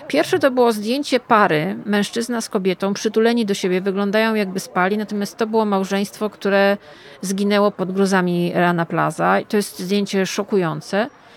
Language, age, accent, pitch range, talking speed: Polish, 40-59, native, 190-225 Hz, 150 wpm